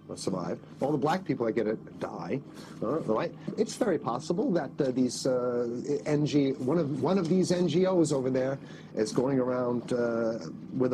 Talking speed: 170 wpm